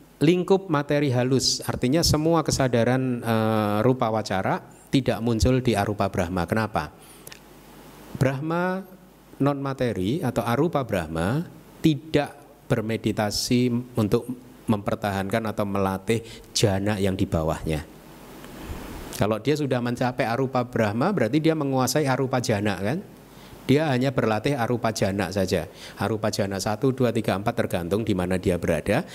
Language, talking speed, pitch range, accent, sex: Indonesian, 120 wpm, 105-135 Hz, native, male